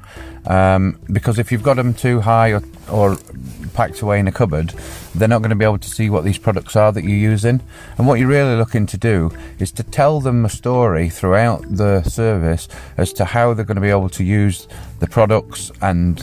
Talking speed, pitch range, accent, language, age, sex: 220 wpm, 90-115 Hz, British, English, 30-49, male